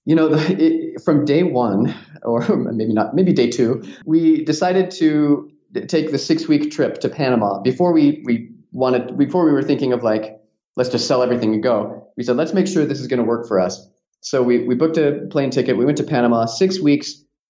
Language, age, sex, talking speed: English, 30-49, male, 215 wpm